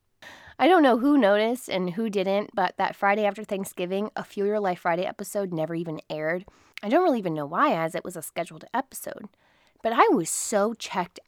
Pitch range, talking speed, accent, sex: 165-225 Hz, 205 wpm, American, female